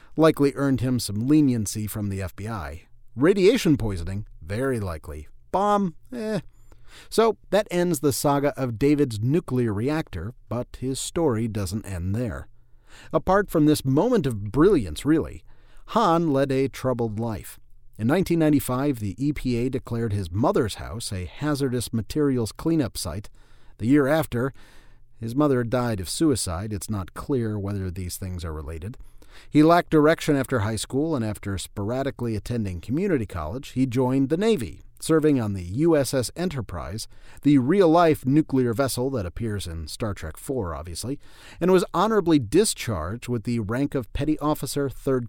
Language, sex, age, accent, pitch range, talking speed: English, male, 40-59, American, 105-145 Hz, 150 wpm